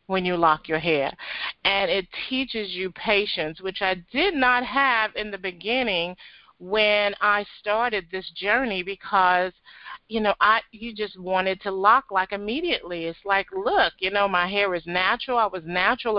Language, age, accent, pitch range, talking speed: English, 40-59, American, 185-230 Hz, 170 wpm